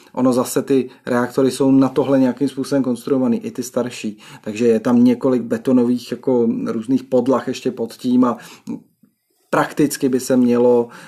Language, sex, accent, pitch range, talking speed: Czech, male, native, 115-140 Hz, 155 wpm